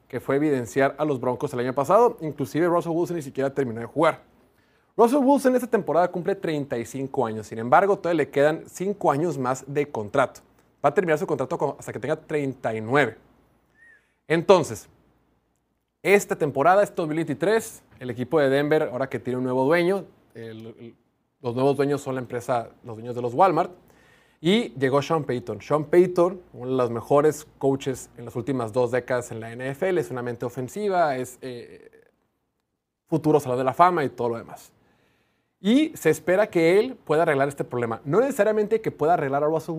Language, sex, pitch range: Spanish, male, 125-175 Hz